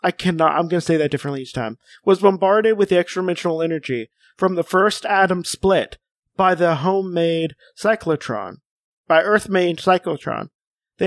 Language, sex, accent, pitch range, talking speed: English, male, American, 160-195 Hz, 155 wpm